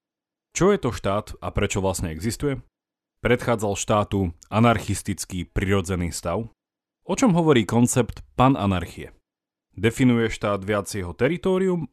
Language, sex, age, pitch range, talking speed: Slovak, male, 30-49, 100-135 Hz, 115 wpm